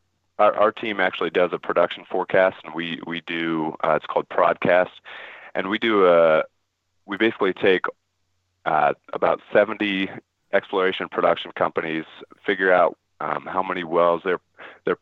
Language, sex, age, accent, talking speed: English, male, 30-49, American, 150 wpm